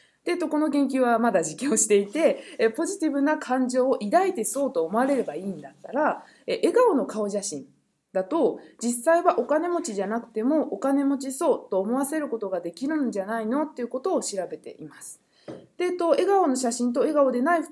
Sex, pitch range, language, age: female, 205-280 Hz, Japanese, 20-39